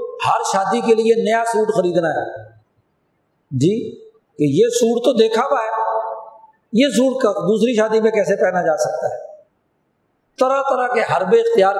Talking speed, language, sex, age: 165 wpm, Urdu, male, 50-69